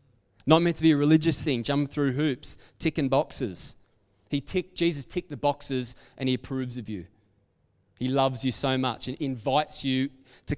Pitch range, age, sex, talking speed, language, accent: 130-155 Hz, 20-39, male, 180 wpm, English, Australian